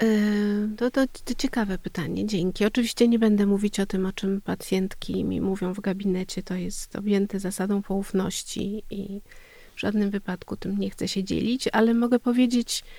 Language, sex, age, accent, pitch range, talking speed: Polish, female, 40-59, native, 185-225 Hz, 165 wpm